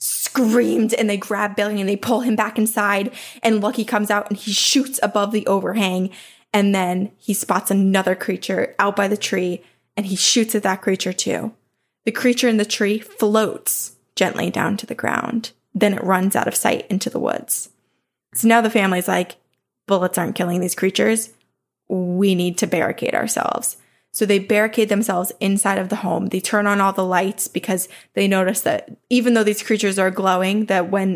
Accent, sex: American, female